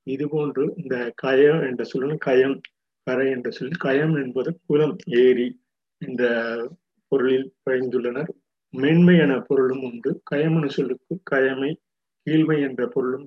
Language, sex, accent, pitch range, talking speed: Tamil, male, native, 130-155 Hz, 120 wpm